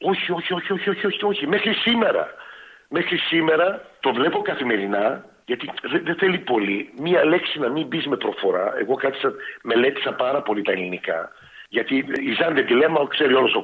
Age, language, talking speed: 50-69, Greek, 180 wpm